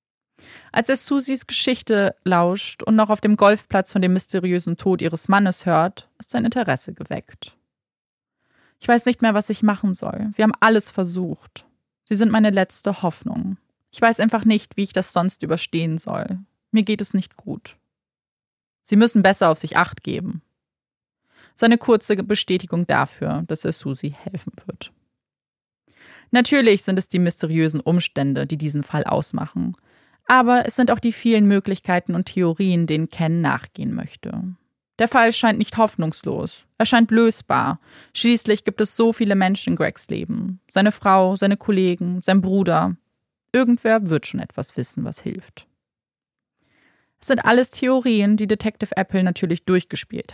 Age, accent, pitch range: 20-39, German, 180-225 Hz